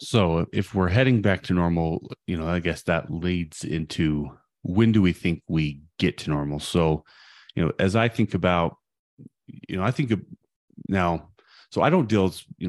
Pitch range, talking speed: 75-95 Hz, 185 wpm